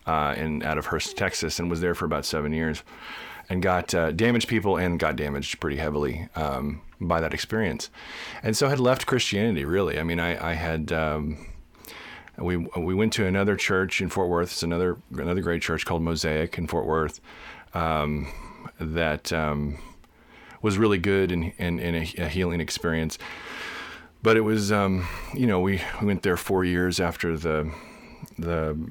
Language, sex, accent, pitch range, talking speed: English, male, American, 80-100 Hz, 180 wpm